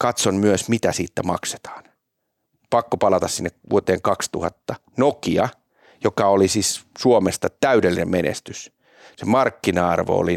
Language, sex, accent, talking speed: Finnish, male, native, 115 wpm